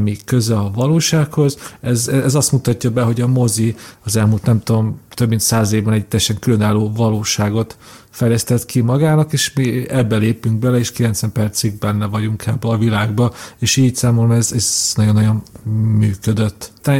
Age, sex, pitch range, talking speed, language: 40-59, male, 115-140 Hz, 165 wpm, Hungarian